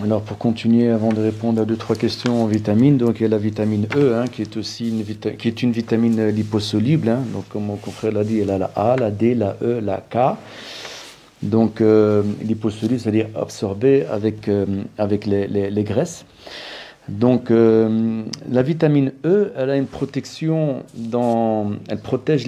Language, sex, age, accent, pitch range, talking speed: French, male, 40-59, French, 100-125 Hz, 185 wpm